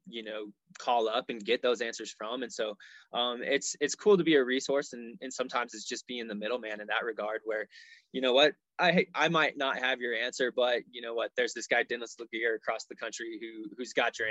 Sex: male